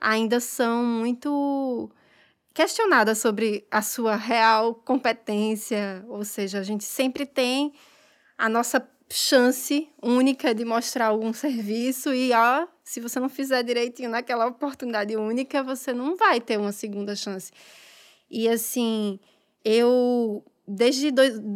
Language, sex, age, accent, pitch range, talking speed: Portuguese, female, 20-39, Brazilian, 215-260 Hz, 125 wpm